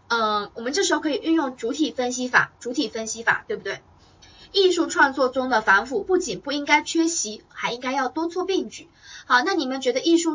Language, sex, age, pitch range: Chinese, female, 20-39, 225-340 Hz